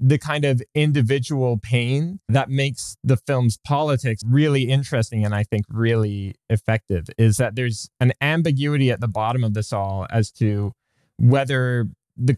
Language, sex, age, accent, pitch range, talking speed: English, male, 20-39, American, 105-130 Hz, 155 wpm